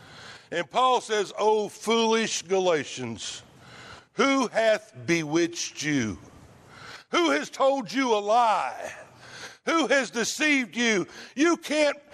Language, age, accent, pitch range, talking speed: English, 60-79, American, 200-275 Hz, 110 wpm